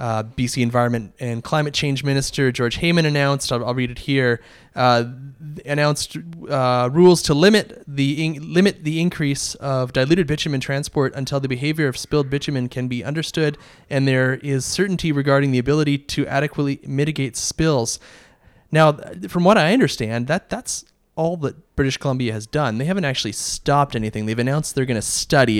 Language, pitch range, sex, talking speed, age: English, 120-150 Hz, male, 175 wpm, 20-39